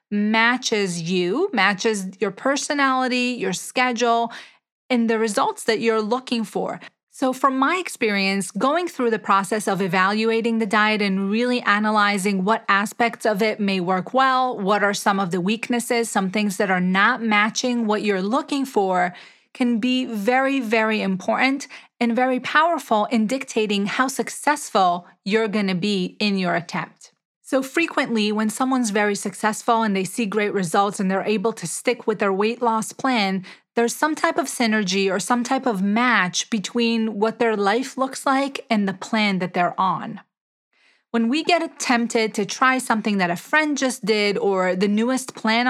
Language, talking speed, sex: English, 170 wpm, female